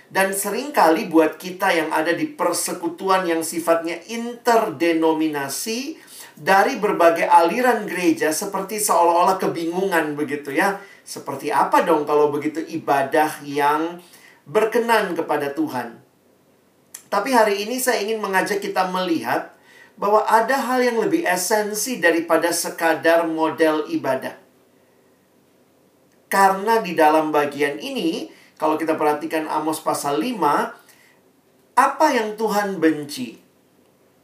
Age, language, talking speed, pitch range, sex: 40-59, Indonesian, 110 wpm, 155-205 Hz, male